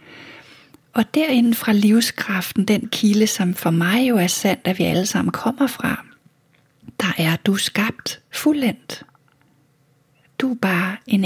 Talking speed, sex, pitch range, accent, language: 145 wpm, female, 175-225 Hz, native, Danish